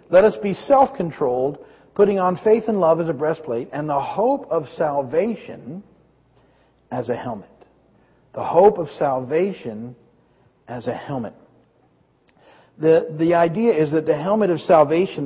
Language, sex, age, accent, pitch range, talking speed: English, male, 50-69, American, 145-190 Hz, 140 wpm